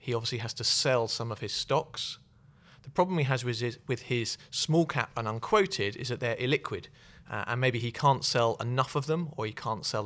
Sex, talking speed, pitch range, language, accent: male, 215 wpm, 115-145 Hz, English, British